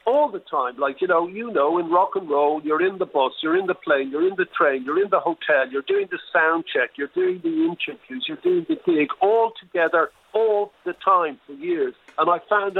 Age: 50-69